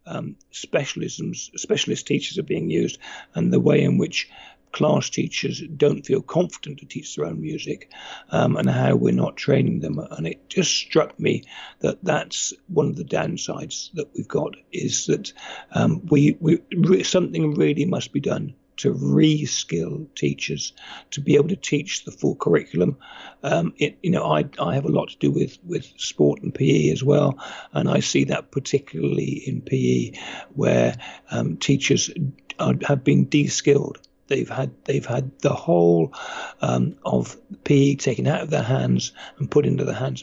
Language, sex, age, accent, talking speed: English, male, 60-79, British, 170 wpm